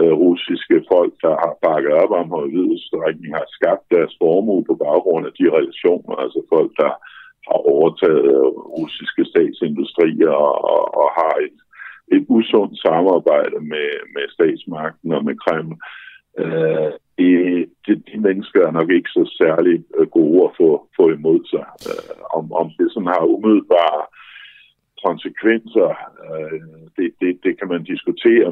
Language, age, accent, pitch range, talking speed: Danish, 60-79, native, 330-435 Hz, 140 wpm